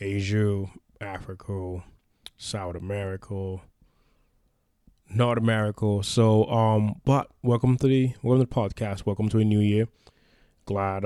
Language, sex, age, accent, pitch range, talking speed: English, male, 20-39, American, 100-115 Hz, 120 wpm